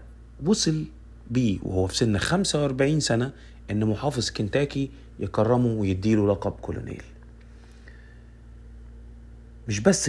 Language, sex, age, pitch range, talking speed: Arabic, male, 30-49, 95-135 Hz, 95 wpm